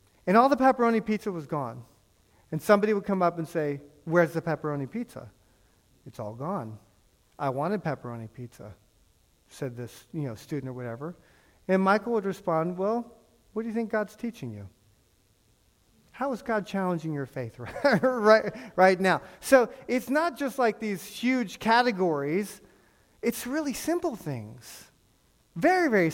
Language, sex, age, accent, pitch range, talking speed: English, male, 40-59, American, 145-225 Hz, 155 wpm